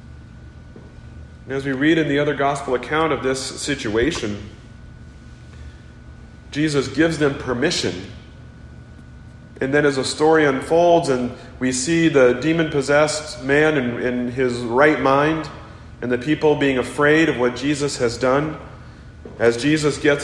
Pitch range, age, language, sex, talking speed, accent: 120-150 Hz, 40-59, English, male, 135 wpm, American